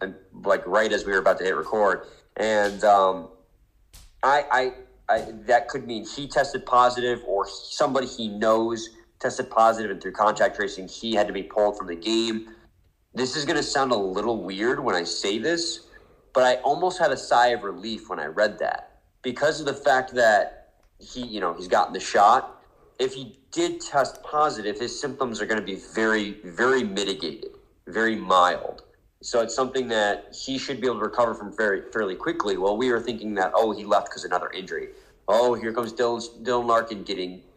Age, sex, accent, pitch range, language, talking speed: 30-49, male, American, 110-130 Hz, English, 200 wpm